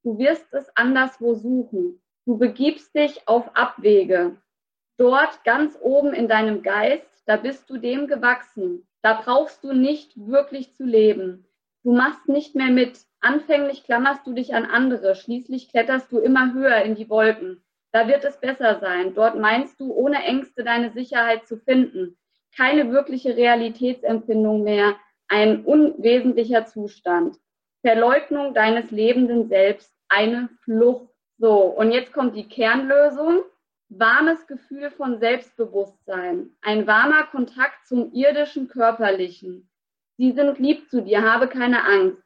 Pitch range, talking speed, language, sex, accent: 220-275 Hz, 140 wpm, German, female, German